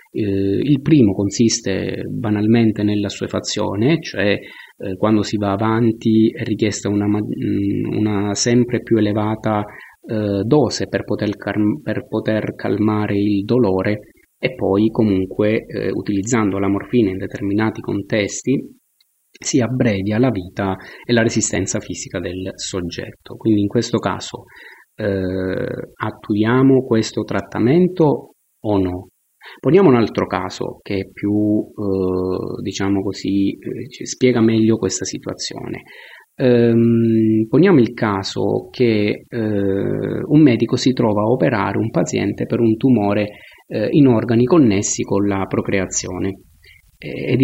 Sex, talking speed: male, 125 wpm